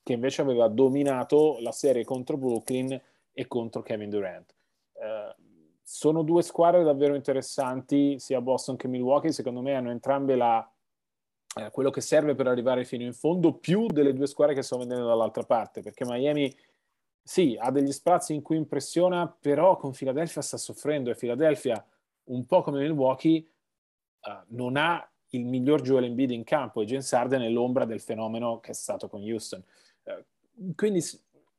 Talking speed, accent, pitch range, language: 165 wpm, native, 130-160 Hz, Italian